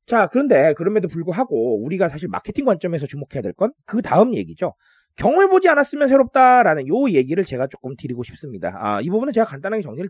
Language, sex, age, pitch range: Korean, male, 30-49, 180-290 Hz